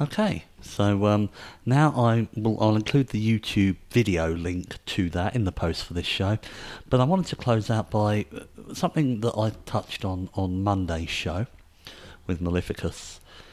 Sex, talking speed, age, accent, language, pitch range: male, 155 wpm, 50-69, British, English, 95-120 Hz